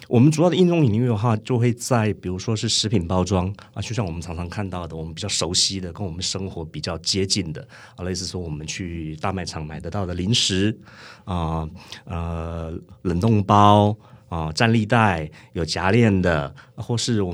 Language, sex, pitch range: Chinese, male, 90-110 Hz